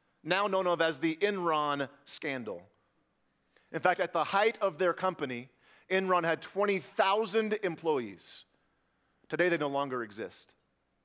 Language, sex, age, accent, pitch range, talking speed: English, male, 40-59, American, 150-220 Hz, 130 wpm